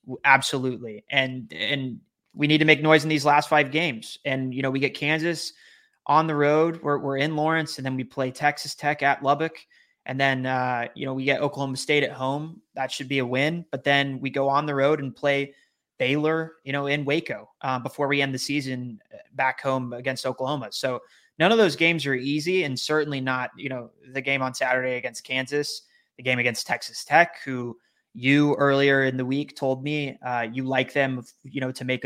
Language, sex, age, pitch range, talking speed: English, male, 20-39, 130-150 Hz, 210 wpm